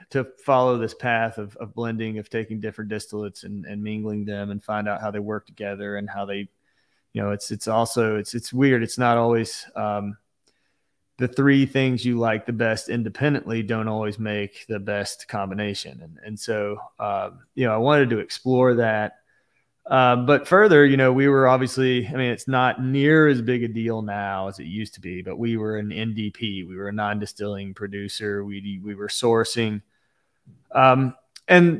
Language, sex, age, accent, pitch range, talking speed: English, male, 30-49, American, 105-130 Hz, 190 wpm